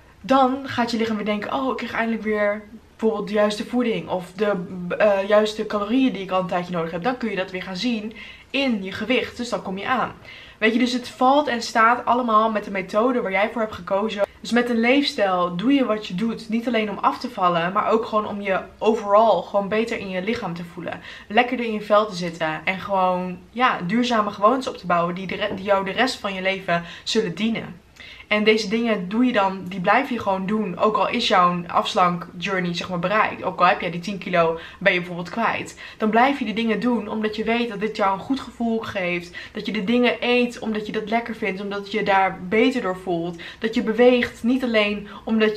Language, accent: Dutch, Dutch